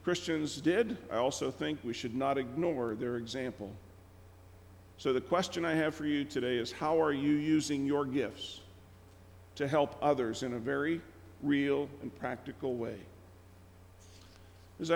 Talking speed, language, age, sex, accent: 150 wpm, English, 50-69, male, American